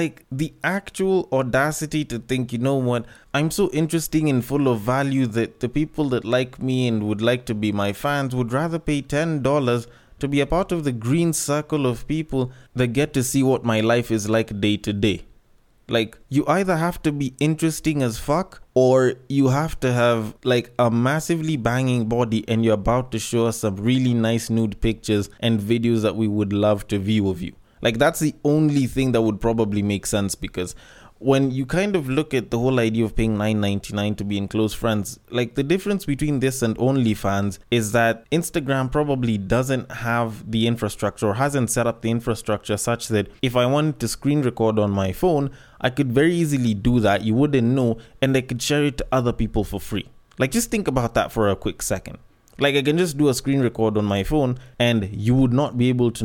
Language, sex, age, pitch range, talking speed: English, male, 20-39, 110-140 Hz, 215 wpm